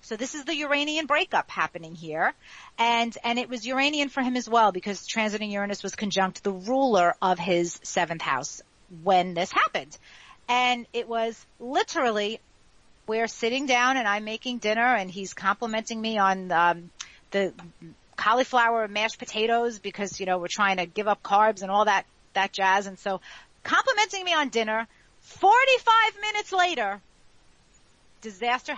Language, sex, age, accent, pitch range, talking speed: English, female, 40-59, American, 195-245 Hz, 160 wpm